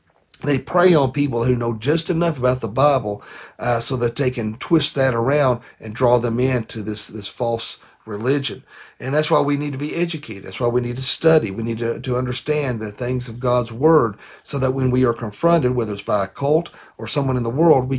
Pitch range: 125-155 Hz